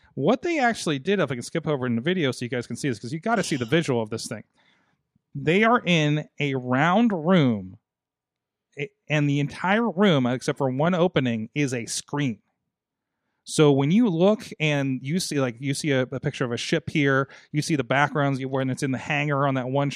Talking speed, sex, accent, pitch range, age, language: 225 wpm, male, American, 135-180 Hz, 30-49, English